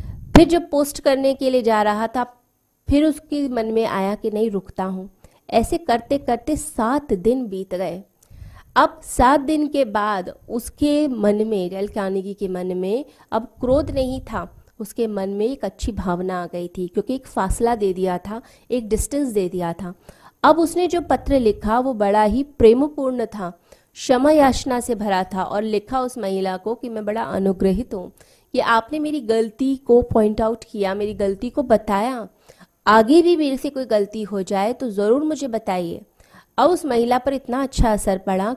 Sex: female